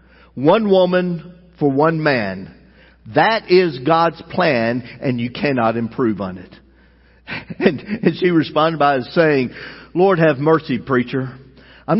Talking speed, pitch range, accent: 130 wpm, 100-165 Hz, American